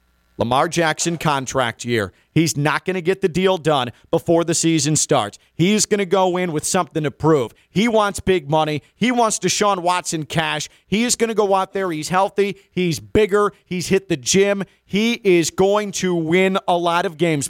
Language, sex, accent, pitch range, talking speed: English, male, American, 145-195 Hz, 200 wpm